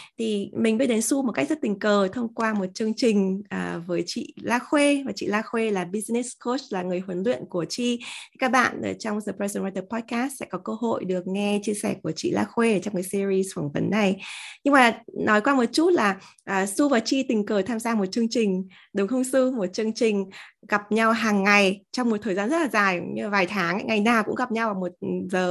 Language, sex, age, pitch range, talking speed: Vietnamese, female, 20-39, 190-245 Hz, 250 wpm